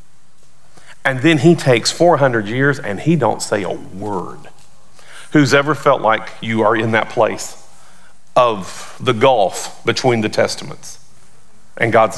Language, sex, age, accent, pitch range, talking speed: English, male, 40-59, American, 110-165 Hz, 145 wpm